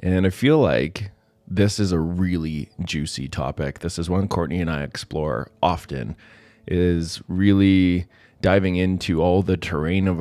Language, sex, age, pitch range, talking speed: English, male, 20-39, 80-100 Hz, 155 wpm